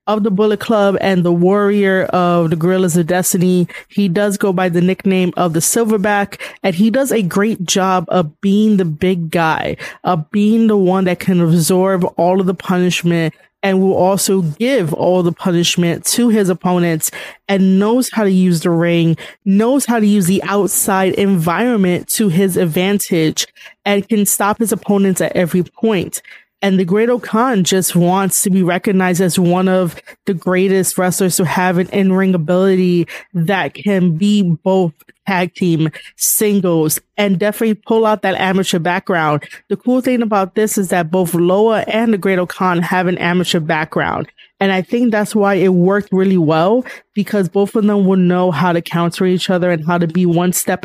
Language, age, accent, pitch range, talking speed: English, 20-39, American, 180-205 Hz, 185 wpm